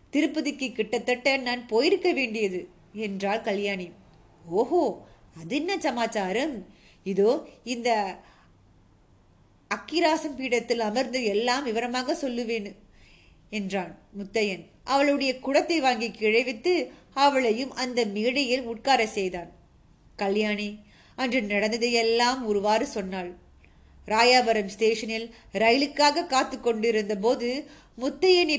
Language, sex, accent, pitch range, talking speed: Tamil, female, native, 215-275 Hz, 65 wpm